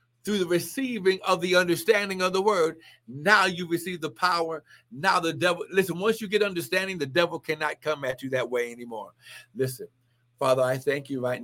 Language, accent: English, American